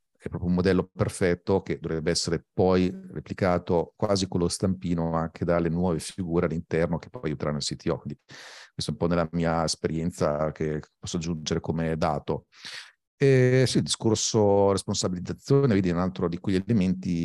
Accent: native